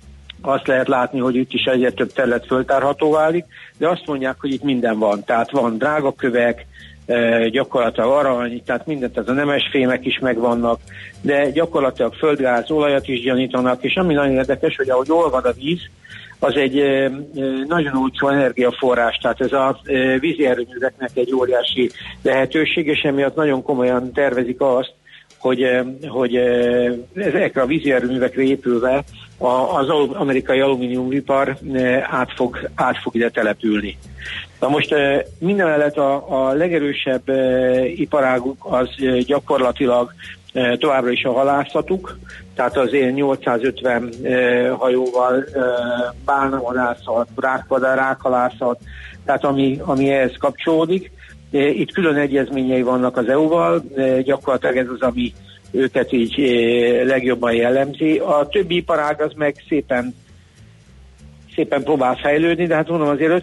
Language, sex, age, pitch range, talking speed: Hungarian, male, 60-79, 125-140 Hz, 125 wpm